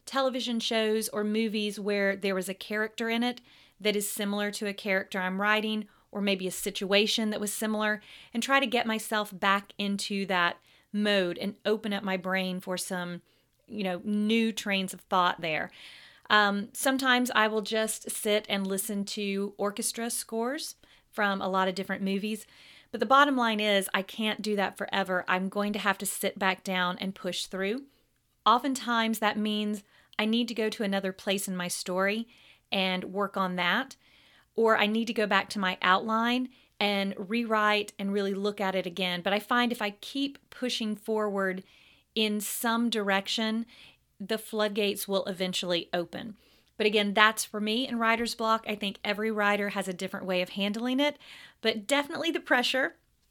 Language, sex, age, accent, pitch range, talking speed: English, female, 30-49, American, 195-225 Hz, 180 wpm